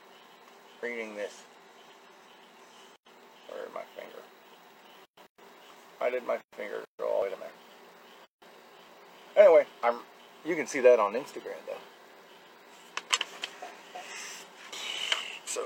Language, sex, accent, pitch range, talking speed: English, male, American, 140-185 Hz, 90 wpm